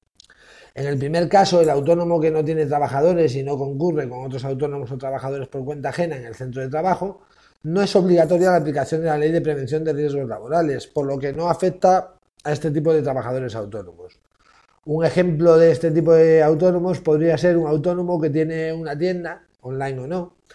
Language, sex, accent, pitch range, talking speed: Spanish, male, Spanish, 140-175 Hz, 200 wpm